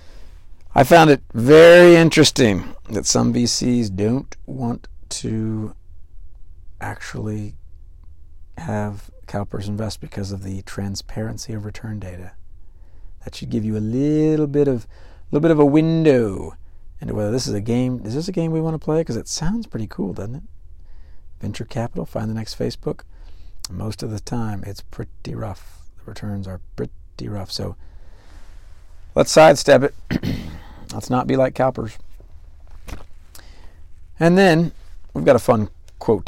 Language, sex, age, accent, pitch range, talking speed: English, male, 50-69, American, 80-125 Hz, 145 wpm